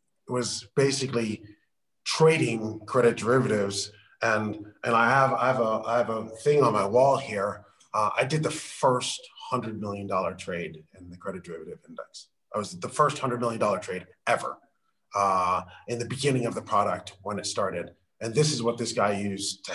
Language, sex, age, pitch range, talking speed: English, male, 30-49, 105-140 Hz, 185 wpm